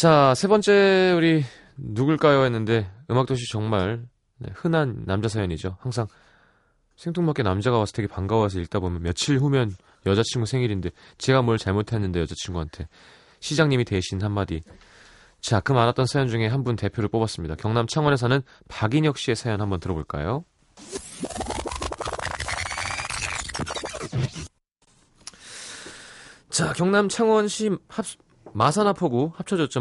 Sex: male